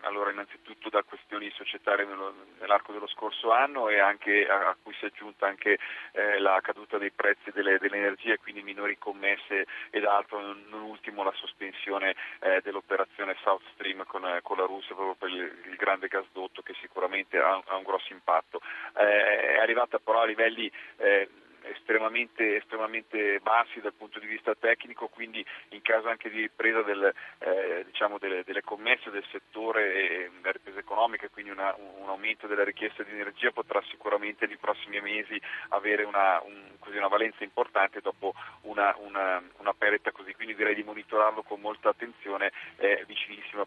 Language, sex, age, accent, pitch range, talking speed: Italian, male, 30-49, native, 100-110 Hz, 160 wpm